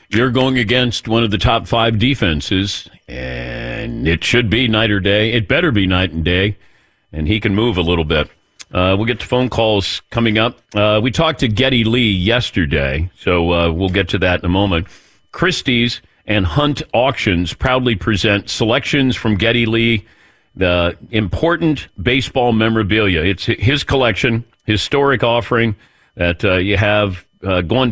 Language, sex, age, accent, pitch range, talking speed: English, male, 50-69, American, 95-125 Hz, 170 wpm